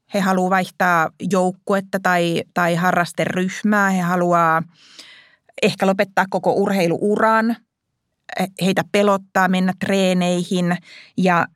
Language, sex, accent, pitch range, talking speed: Finnish, female, native, 170-200 Hz, 95 wpm